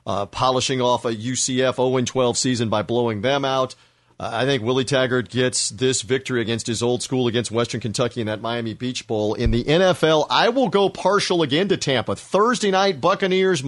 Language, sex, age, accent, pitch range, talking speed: English, male, 40-59, American, 120-160 Hz, 195 wpm